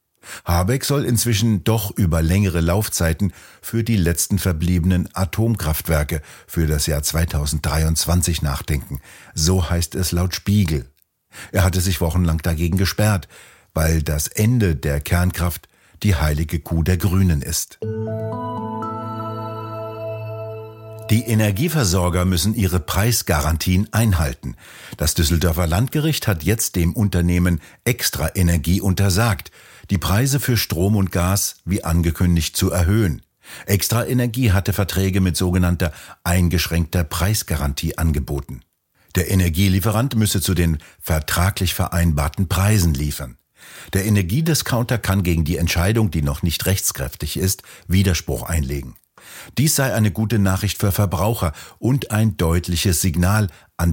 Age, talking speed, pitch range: 60-79, 120 wpm, 85-105 Hz